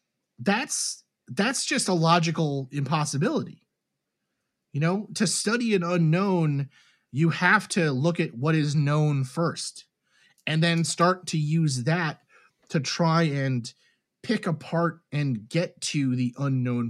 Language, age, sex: English, 30-49, male